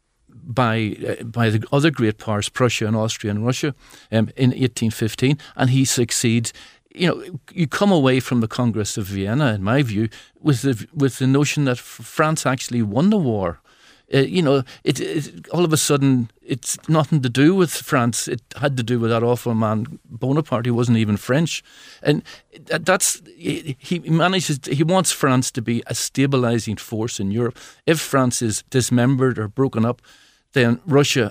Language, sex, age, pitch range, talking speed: English, male, 50-69, 115-140 Hz, 180 wpm